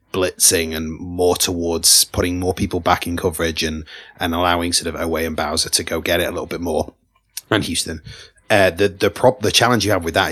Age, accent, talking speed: 30-49, British, 220 wpm